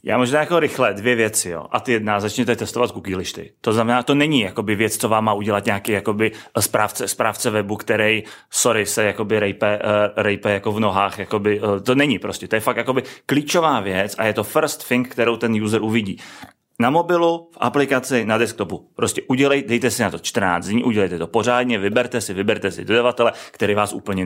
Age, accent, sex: 30-49, native, male